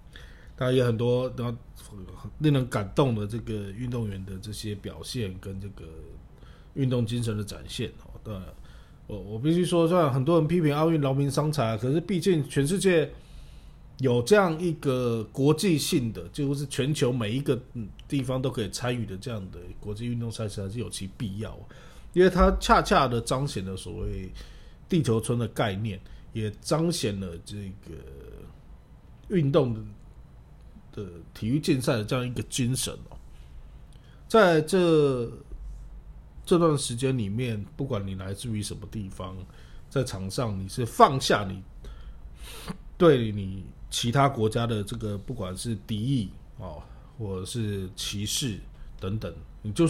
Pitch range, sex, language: 100-140 Hz, male, Chinese